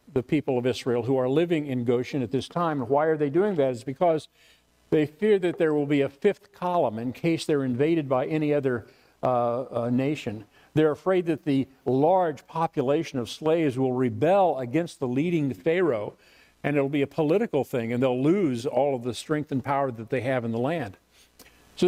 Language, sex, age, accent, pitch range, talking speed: English, male, 50-69, American, 125-160 Hz, 205 wpm